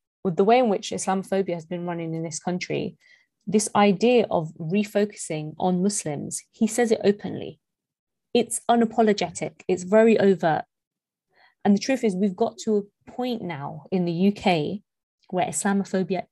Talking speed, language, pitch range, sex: 155 wpm, English, 170-215 Hz, female